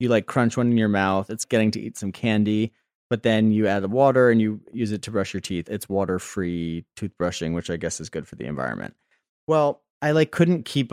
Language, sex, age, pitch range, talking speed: English, male, 30-49, 100-125 Hz, 240 wpm